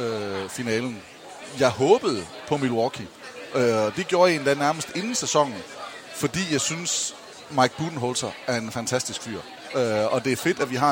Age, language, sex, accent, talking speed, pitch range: 30-49, English, male, Danish, 155 wpm, 120-150 Hz